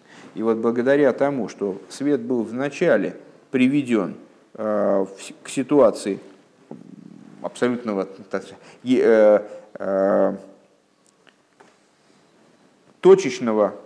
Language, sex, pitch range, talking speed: Russian, male, 110-140 Hz, 55 wpm